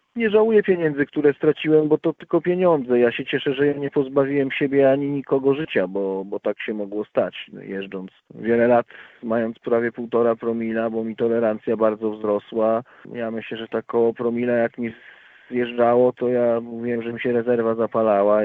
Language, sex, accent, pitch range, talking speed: Polish, male, native, 110-140 Hz, 180 wpm